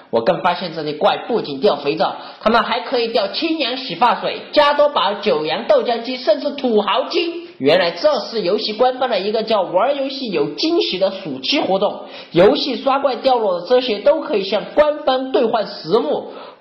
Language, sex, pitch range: Chinese, male, 210-300 Hz